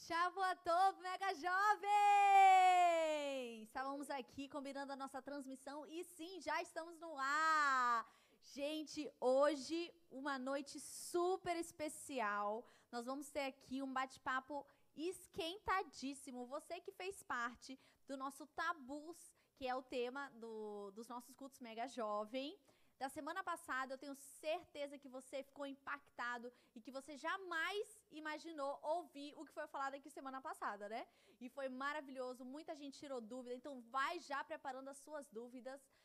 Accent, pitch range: Brazilian, 265-320 Hz